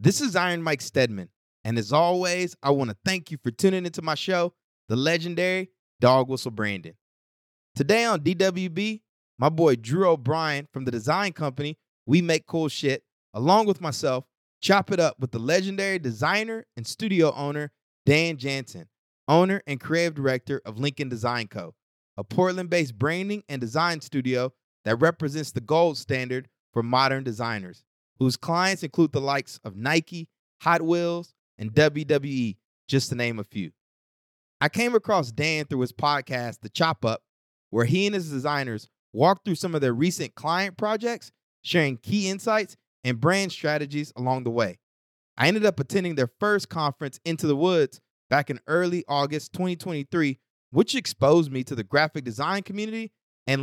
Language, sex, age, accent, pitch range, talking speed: English, male, 20-39, American, 130-180 Hz, 165 wpm